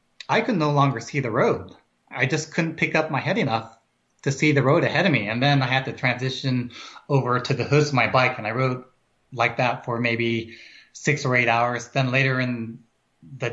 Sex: male